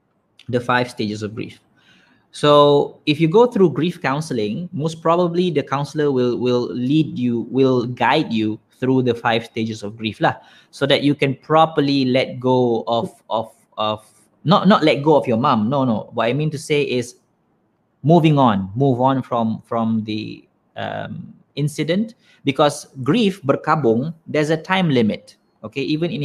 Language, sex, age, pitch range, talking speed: Malay, male, 20-39, 115-150 Hz, 170 wpm